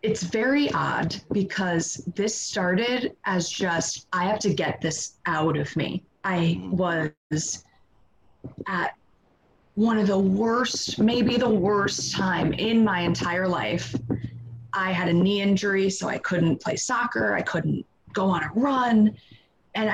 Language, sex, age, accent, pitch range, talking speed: English, female, 20-39, American, 170-205 Hz, 145 wpm